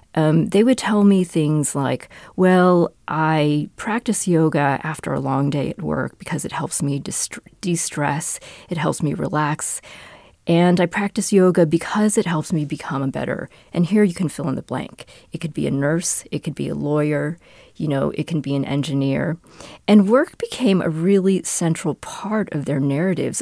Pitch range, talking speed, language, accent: 150-195 Hz, 185 wpm, English, American